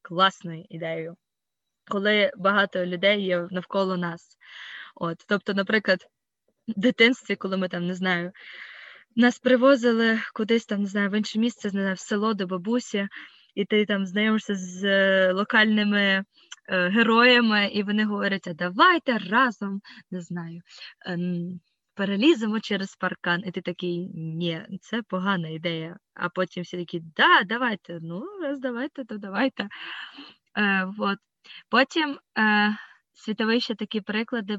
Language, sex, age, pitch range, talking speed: Ukrainian, female, 20-39, 185-225 Hz, 125 wpm